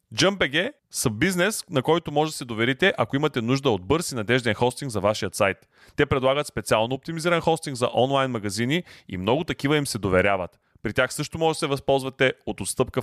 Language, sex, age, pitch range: Bulgarian, male, 30-49, 120-155 Hz